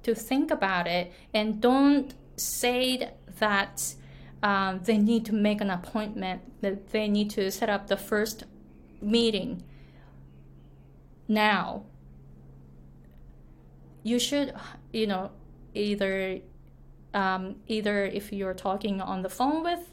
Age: 20-39